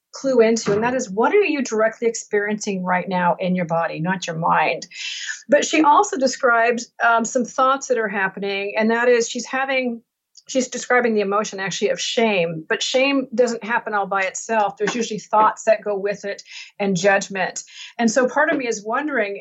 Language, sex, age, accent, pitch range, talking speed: English, female, 40-59, American, 205-260 Hz, 195 wpm